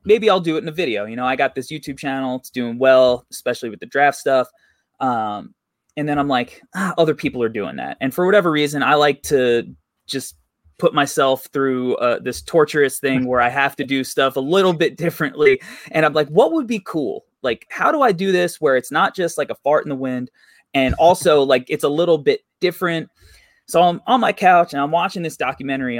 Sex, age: male, 20-39